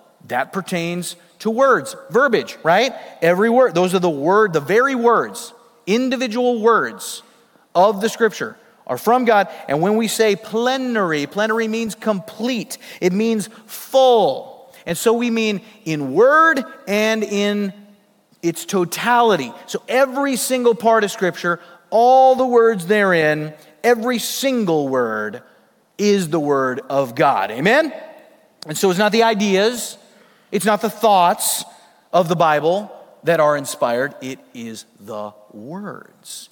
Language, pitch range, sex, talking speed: English, 145-225 Hz, male, 135 wpm